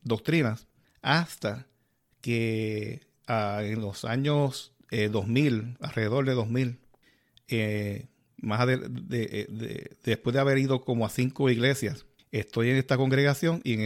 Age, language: 50-69, Spanish